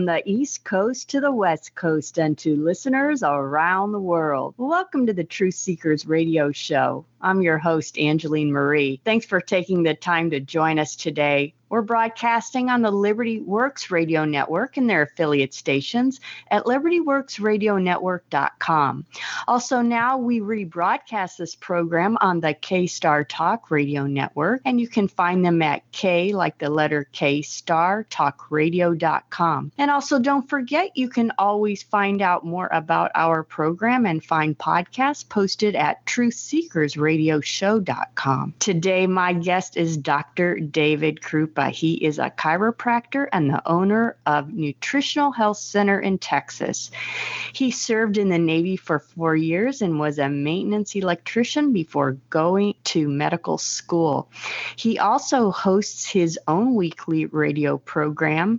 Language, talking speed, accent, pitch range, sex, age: English, 145 wpm, American, 155-225 Hz, female, 50-69